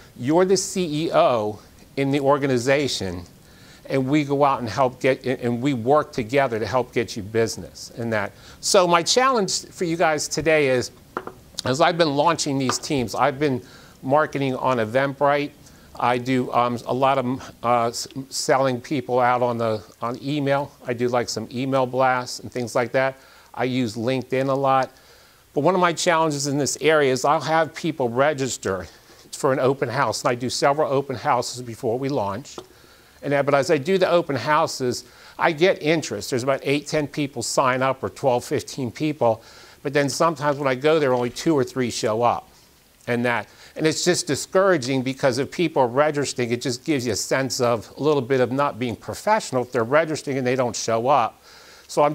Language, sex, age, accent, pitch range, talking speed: English, male, 40-59, American, 120-145 Hz, 195 wpm